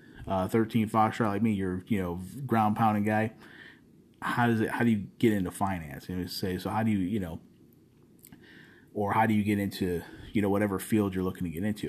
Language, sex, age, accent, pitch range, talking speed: English, male, 30-49, American, 90-110 Hz, 215 wpm